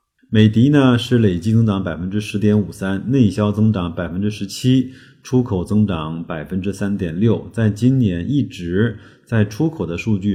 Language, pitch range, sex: Chinese, 95-115 Hz, male